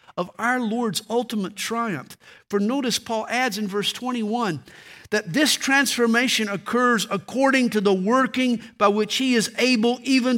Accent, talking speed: American, 150 wpm